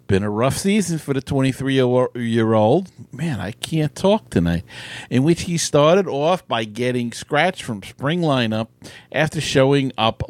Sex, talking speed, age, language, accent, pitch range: male, 165 wpm, 50-69, English, American, 100-140 Hz